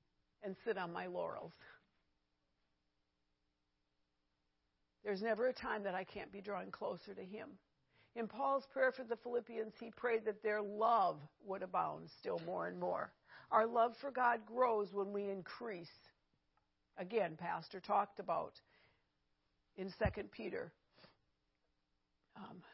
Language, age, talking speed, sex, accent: English, 50-69, 130 wpm, female, American